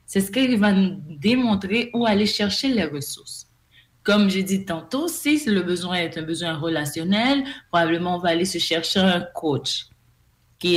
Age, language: 30-49, English